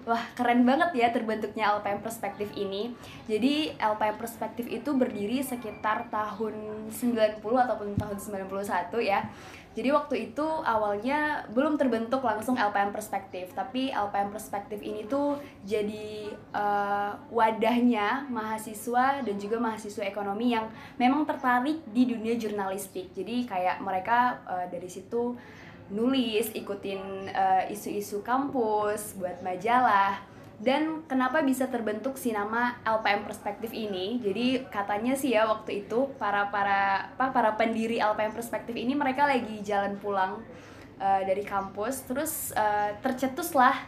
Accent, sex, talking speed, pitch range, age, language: native, female, 125 wpm, 205-250 Hz, 20-39, Indonesian